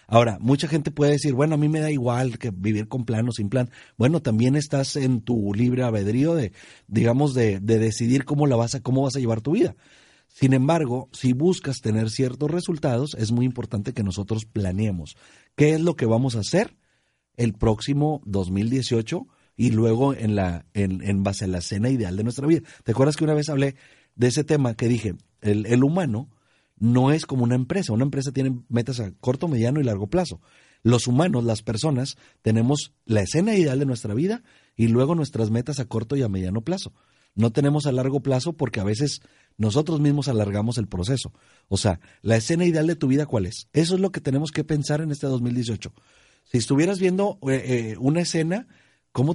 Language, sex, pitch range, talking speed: Spanish, male, 115-145 Hz, 205 wpm